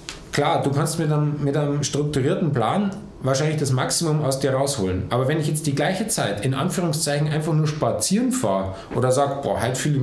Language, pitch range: German, 125-170 Hz